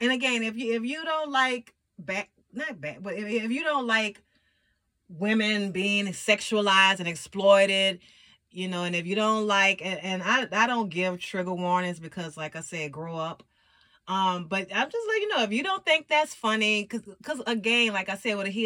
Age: 30-49